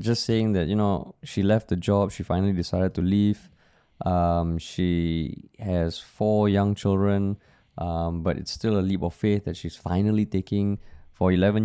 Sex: male